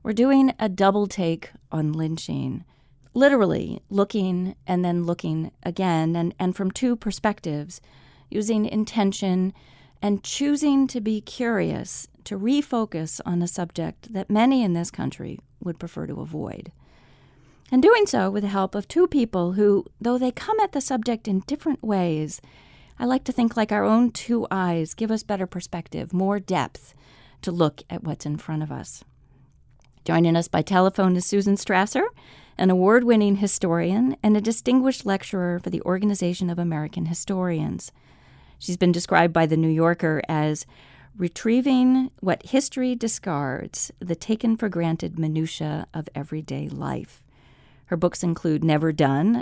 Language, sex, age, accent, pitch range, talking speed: English, female, 40-59, American, 165-225 Hz, 150 wpm